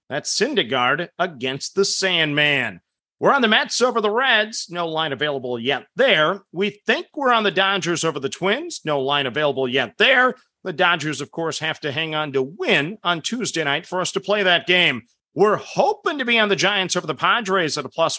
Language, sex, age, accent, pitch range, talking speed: English, male, 40-59, American, 150-210 Hz, 210 wpm